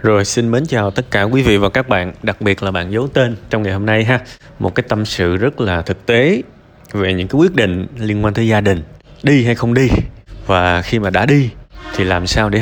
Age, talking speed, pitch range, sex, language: 20-39, 250 wpm, 95-120 Hz, male, Vietnamese